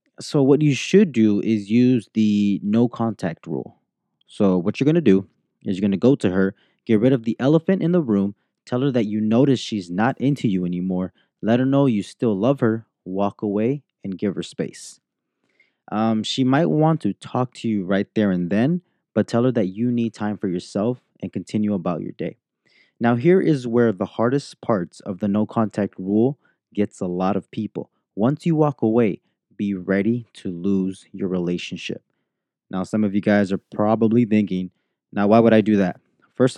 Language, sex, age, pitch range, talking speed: English, male, 20-39, 100-120 Hz, 200 wpm